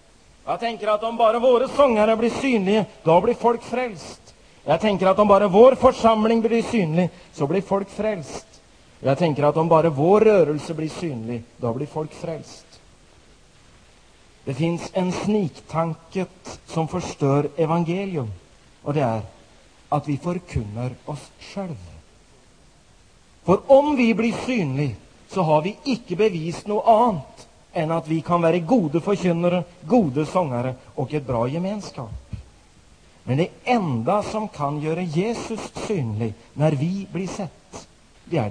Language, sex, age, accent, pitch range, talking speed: Swedish, male, 40-59, native, 135-200 Hz, 140 wpm